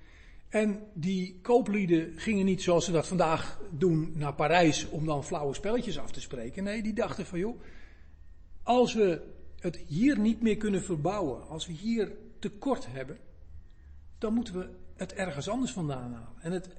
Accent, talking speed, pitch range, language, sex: Dutch, 170 wpm, 140-195 Hz, Dutch, male